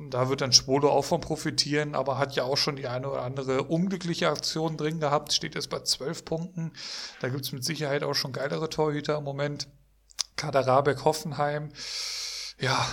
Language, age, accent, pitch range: German, 40-59, German, 135-165 Hz